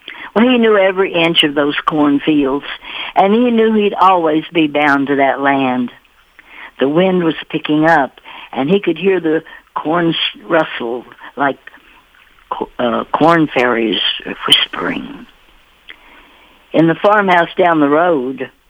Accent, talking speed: American, 130 wpm